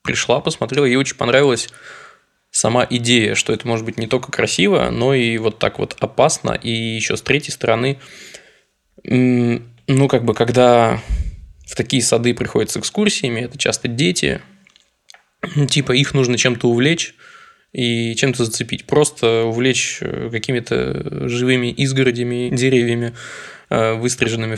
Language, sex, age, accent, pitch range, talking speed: Russian, male, 20-39, native, 120-140 Hz, 130 wpm